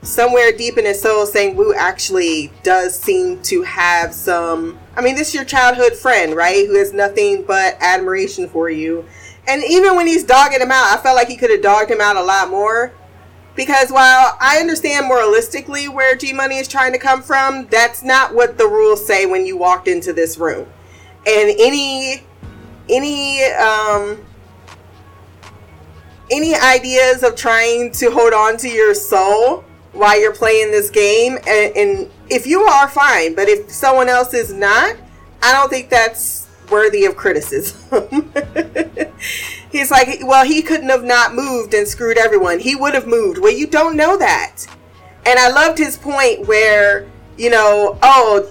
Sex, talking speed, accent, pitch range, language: female, 170 wpm, American, 205-285 Hz, English